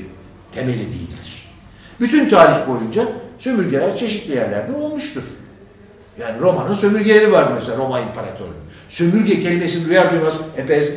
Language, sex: Turkish, male